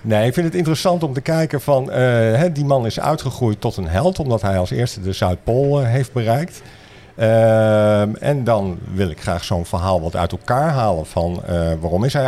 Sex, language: male, Dutch